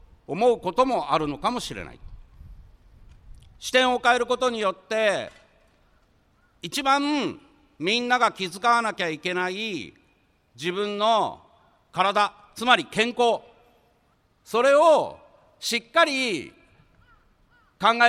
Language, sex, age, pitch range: Japanese, male, 60-79, 170-255 Hz